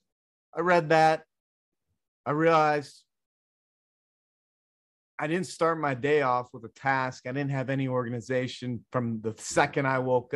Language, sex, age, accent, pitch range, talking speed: English, male, 30-49, American, 125-165 Hz, 140 wpm